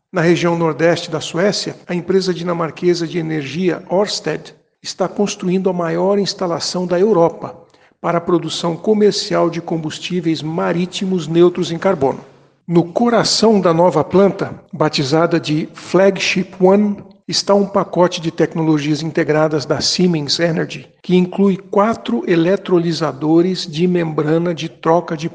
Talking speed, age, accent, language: 130 wpm, 60-79, Brazilian, Portuguese